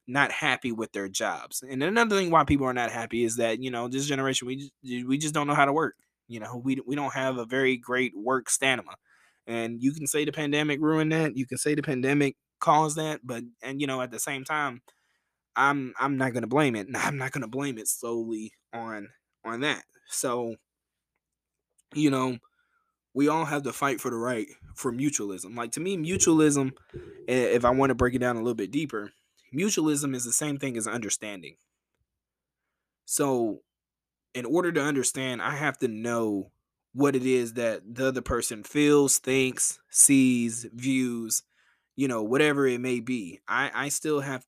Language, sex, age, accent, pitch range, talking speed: English, male, 20-39, American, 120-140 Hz, 195 wpm